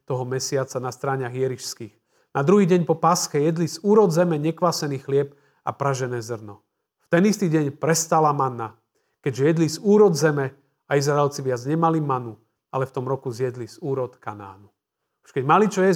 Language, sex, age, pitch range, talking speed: Slovak, male, 40-59, 115-150 Hz, 180 wpm